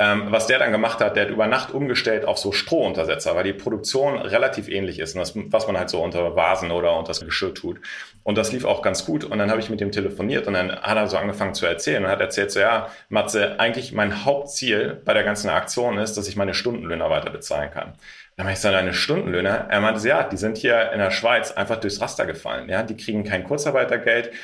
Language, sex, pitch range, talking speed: German, male, 100-120 Hz, 240 wpm